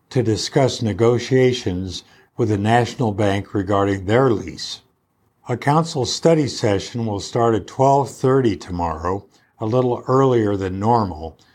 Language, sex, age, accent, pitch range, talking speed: English, male, 60-79, American, 100-125 Hz, 125 wpm